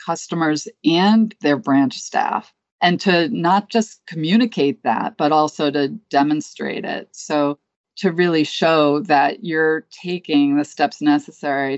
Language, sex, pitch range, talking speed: English, female, 145-205 Hz, 135 wpm